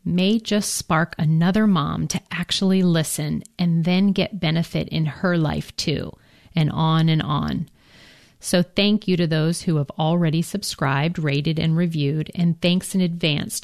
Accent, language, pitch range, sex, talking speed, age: American, English, 155-190 Hz, female, 160 wpm, 40-59